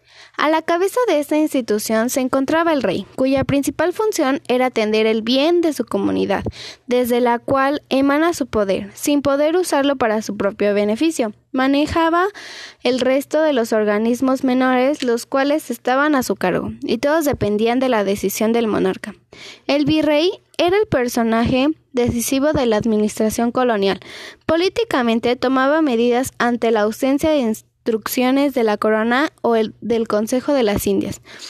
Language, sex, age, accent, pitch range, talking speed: Spanish, female, 10-29, Mexican, 230-300 Hz, 155 wpm